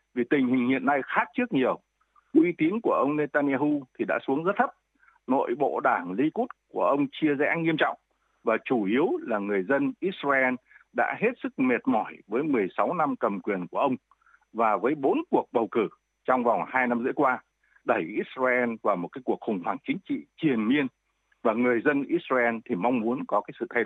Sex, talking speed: male, 205 wpm